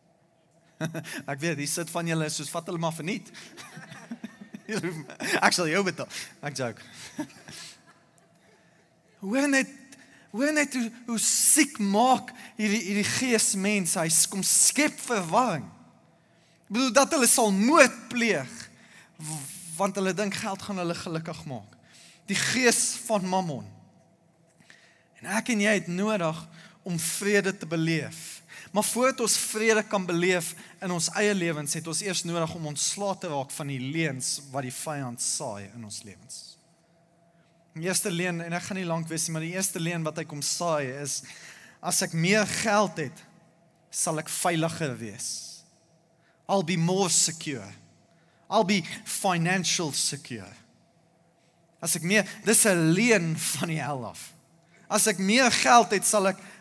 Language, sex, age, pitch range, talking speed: English, male, 20-39, 165-205 Hz, 155 wpm